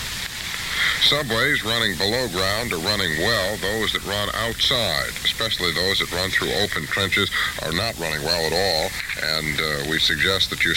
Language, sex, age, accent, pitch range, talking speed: English, male, 60-79, American, 85-105 Hz, 165 wpm